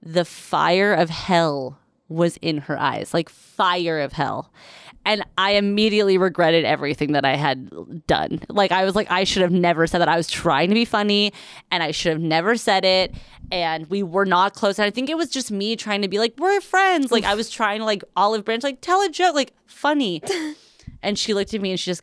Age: 20-39